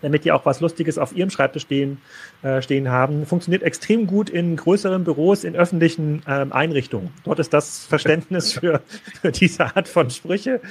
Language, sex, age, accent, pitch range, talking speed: German, male, 30-49, German, 150-185 Hz, 180 wpm